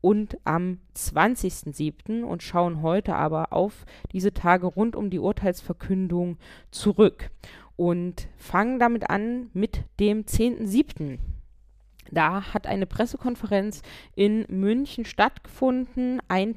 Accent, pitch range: German, 180-220 Hz